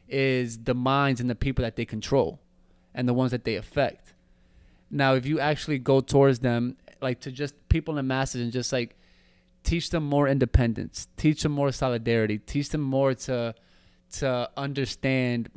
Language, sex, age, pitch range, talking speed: English, male, 20-39, 115-135 Hz, 175 wpm